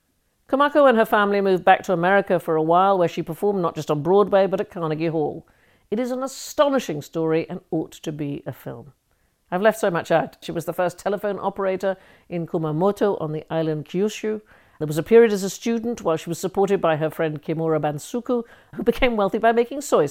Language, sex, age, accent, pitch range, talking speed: English, female, 50-69, British, 155-200 Hz, 215 wpm